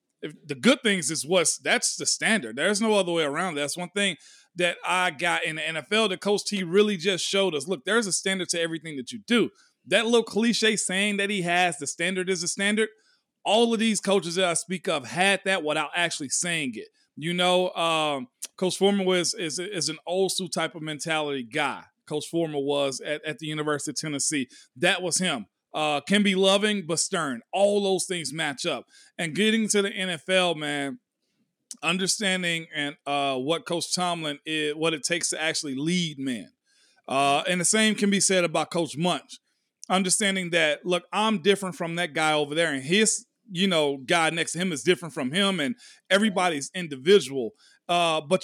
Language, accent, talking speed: English, American, 200 wpm